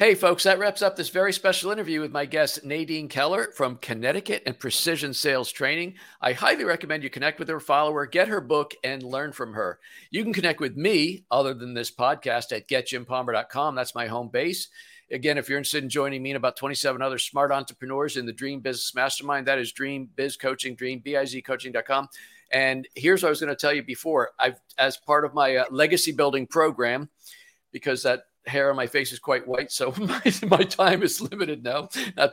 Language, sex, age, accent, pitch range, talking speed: English, male, 50-69, American, 130-170 Hz, 215 wpm